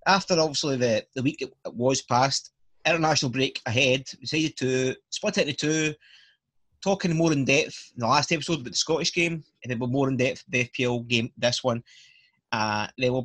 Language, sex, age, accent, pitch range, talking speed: English, male, 20-39, British, 135-185 Hz, 180 wpm